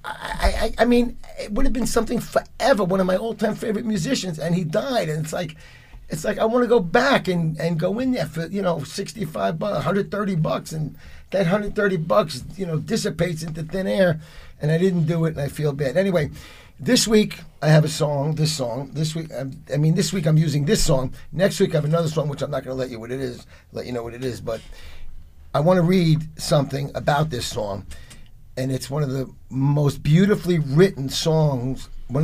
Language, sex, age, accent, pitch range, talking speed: English, male, 50-69, American, 120-175 Hz, 220 wpm